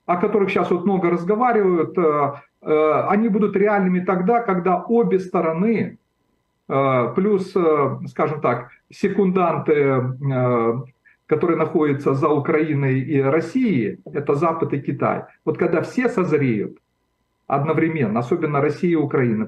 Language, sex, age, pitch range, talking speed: Russian, male, 50-69, 150-205 Hz, 110 wpm